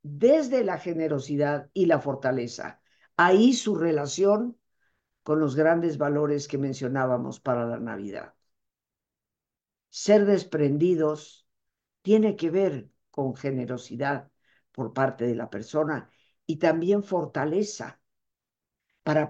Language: Spanish